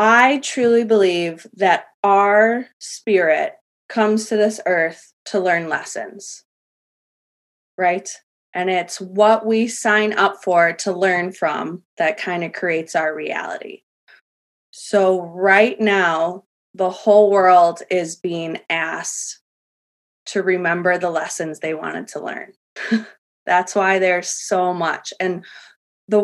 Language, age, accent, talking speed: English, 20-39, American, 125 wpm